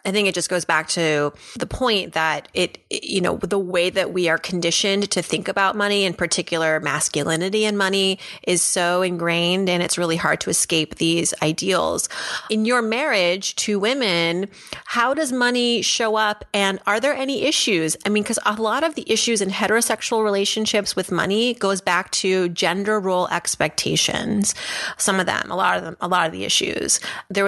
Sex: female